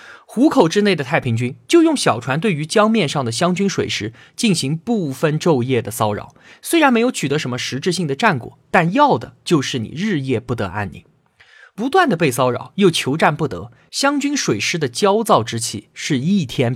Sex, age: male, 20-39